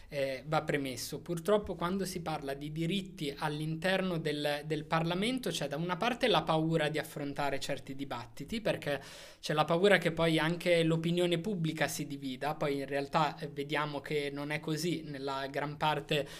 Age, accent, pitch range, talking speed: 20-39, native, 150-185 Hz, 170 wpm